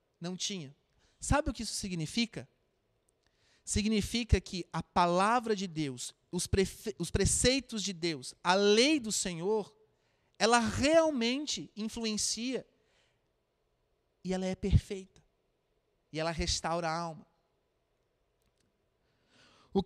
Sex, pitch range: male, 175-230 Hz